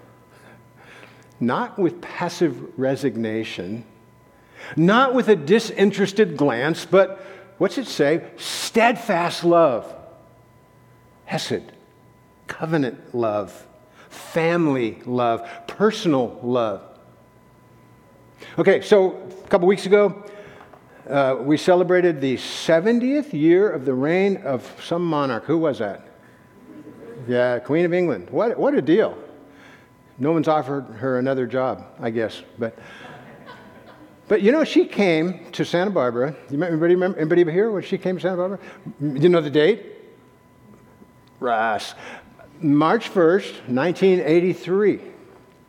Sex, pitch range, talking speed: male, 135-190 Hz, 115 wpm